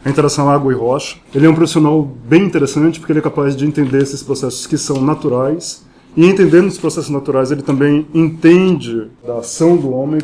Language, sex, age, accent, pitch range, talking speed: Portuguese, male, 20-39, Brazilian, 130-150 Hz, 200 wpm